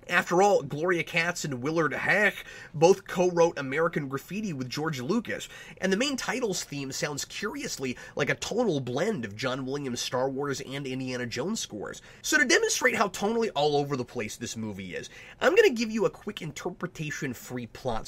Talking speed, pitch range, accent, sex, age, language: 180 wpm, 125-185 Hz, American, male, 30-49, English